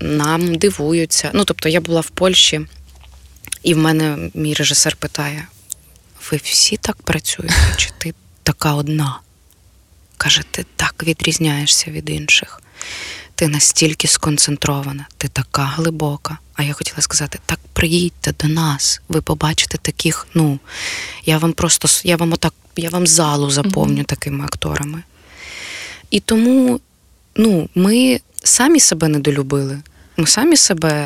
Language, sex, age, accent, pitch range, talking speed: Ukrainian, female, 20-39, native, 145-170 Hz, 135 wpm